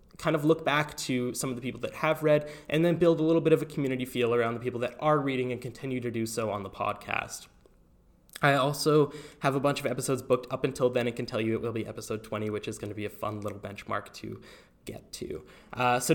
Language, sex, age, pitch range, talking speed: English, male, 10-29, 110-150 Hz, 260 wpm